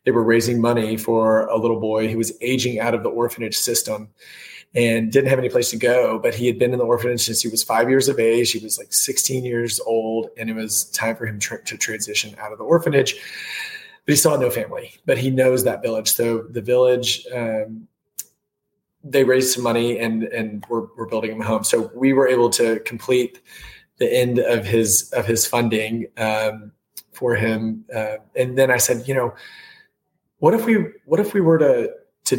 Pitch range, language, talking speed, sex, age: 115-125 Hz, English, 210 wpm, male, 30-49